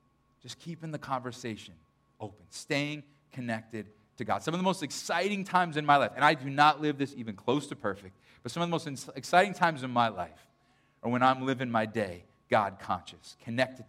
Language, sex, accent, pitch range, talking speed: English, male, American, 130-180 Hz, 205 wpm